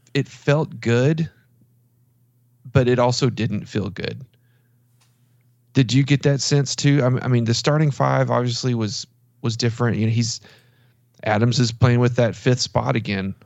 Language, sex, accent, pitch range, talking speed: English, male, American, 105-125 Hz, 155 wpm